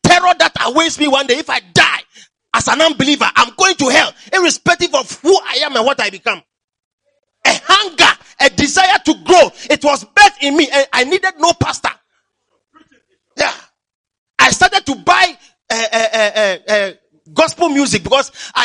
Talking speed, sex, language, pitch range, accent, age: 170 wpm, male, English, 245-340 Hz, Nigerian, 40-59